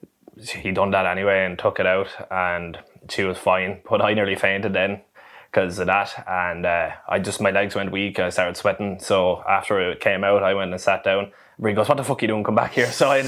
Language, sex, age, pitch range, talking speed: English, male, 20-39, 95-100 Hz, 250 wpm